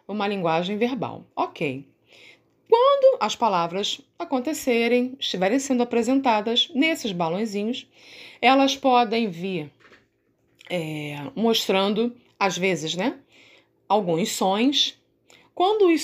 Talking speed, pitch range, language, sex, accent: 95 wpm, 165-230 Hz, Portuguese, female, Brazilian